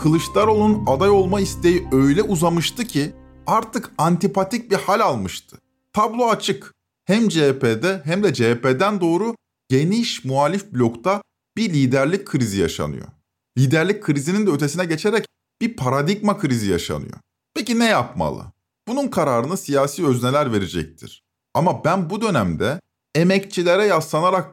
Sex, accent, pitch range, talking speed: male, native, 135-195 Hz, 120 wpm